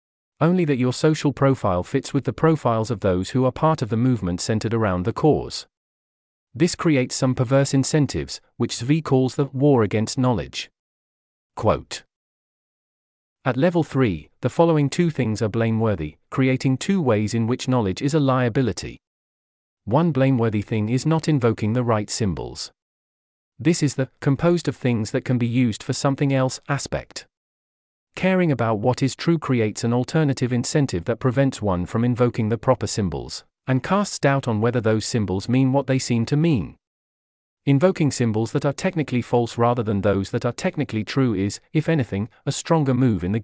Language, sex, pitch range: English, male, 110-140 Hz